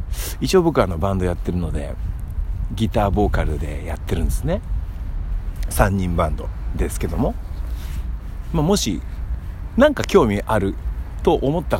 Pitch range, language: 80-105 Hz, Japanese